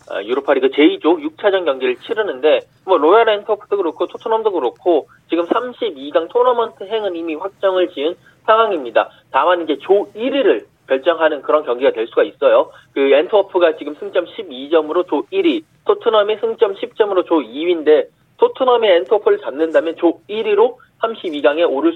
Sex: male